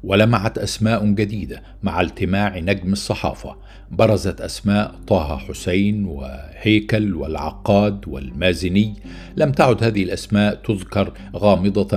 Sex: male